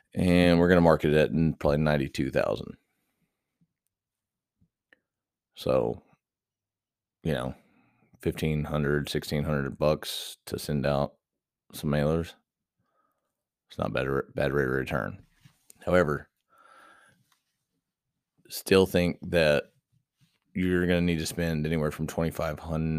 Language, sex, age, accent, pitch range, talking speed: English, male, 30-49, American, 75-85 Hz, 105 wpm